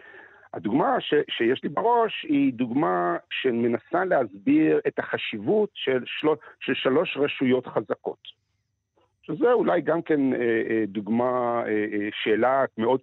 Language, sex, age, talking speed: Hebrew, male, 50-69, 130 wpm